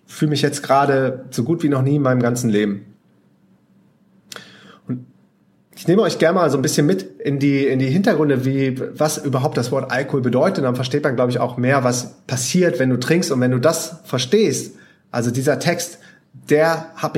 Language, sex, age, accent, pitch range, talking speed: German, male, 30-49, German, 120-150 Hz, 205 wpm